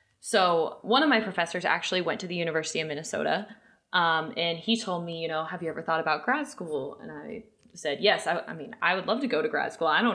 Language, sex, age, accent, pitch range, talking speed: English, female, 20-39, American, 160-195 Hz, 255 wpm